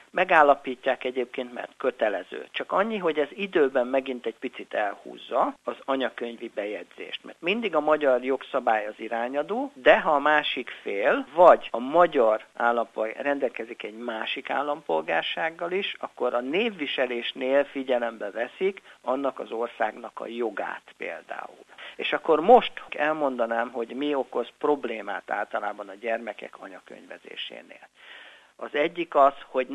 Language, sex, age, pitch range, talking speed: Hungarian, male, 60-79, 120-165 Hz, 130 wpm